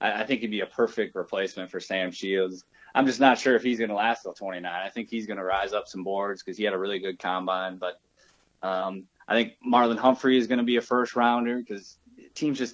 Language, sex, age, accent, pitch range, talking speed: English, male, 20-39, American, 95-115 Hz, 245 wpm